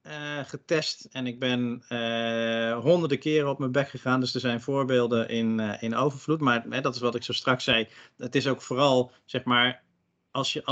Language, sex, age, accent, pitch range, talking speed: Dutch, male, 50-69, Dutch, 115-140 Hz, 195 wpm